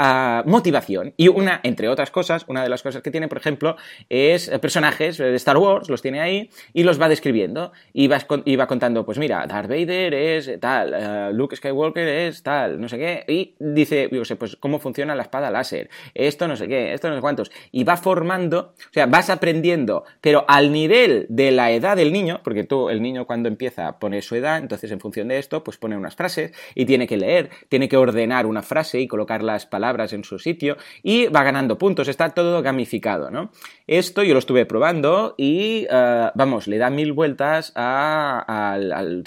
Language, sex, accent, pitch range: Spanish, male, Spanish, 110-160 Hz